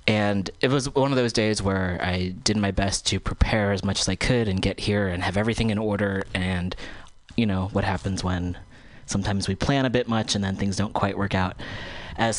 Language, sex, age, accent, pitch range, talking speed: English, male, 20-39, American, 95-115 Hz, 230 wpm